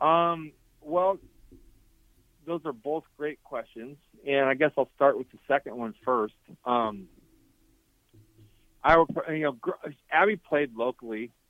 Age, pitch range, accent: 40-59, 115-140 Hz, American